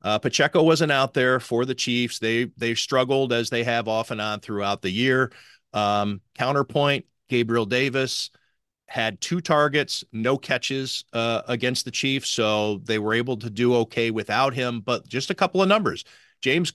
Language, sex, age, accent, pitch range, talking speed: English, male, 40-59, American, 115-145 Hz, 175 wpm